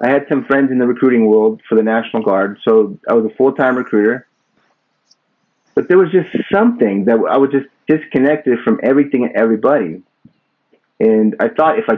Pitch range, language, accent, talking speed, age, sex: 115-170 Hz, English, American, 185 wpm, 30-49, male